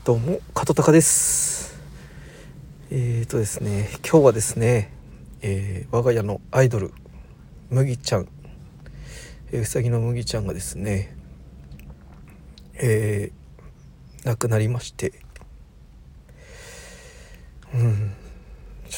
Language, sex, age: Japanese, male, 50-69